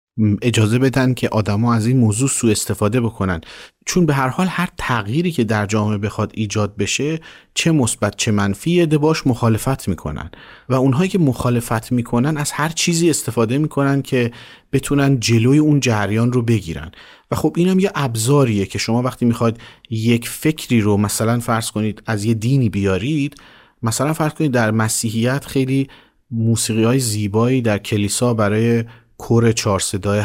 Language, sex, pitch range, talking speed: Persian, male, 110-140 Hz, 155 wpm